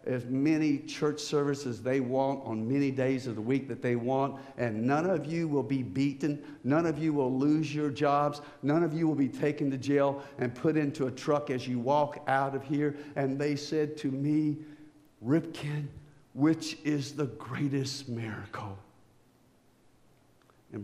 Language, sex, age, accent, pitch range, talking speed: English, male, 60-79, American, 130-155 Hz, 175 wpm